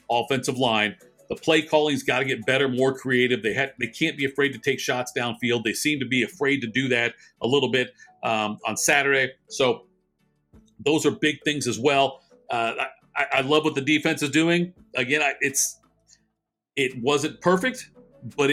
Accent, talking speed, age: American, 190 wpm, 50-69